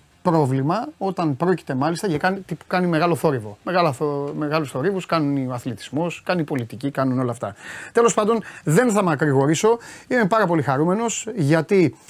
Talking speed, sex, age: 155 wpm, male, 30-49